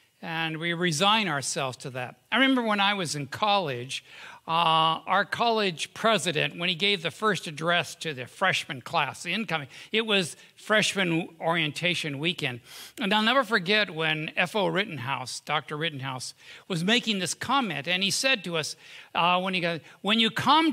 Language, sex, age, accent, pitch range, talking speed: English, male, 60-79, American, 160-215 Hz, 160 wpm